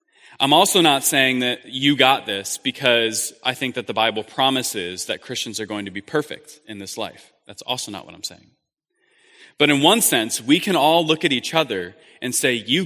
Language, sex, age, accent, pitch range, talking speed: English, male, 20-39, American, 120-160 Hz, 210 wpm